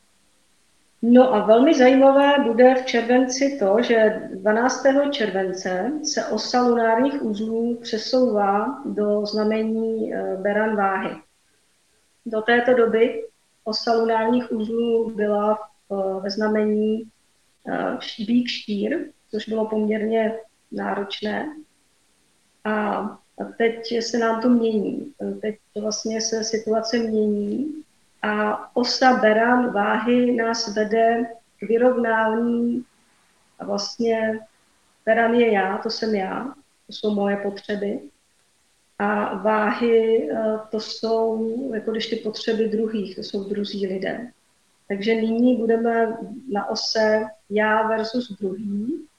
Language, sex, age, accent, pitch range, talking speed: Czech, female, 40-59, native, 210-235 Hz, 105 wpm